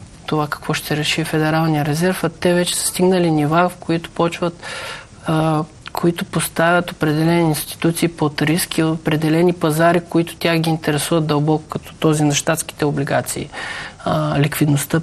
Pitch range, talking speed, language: 145-165 Hz, 130 wpm, Bulgarian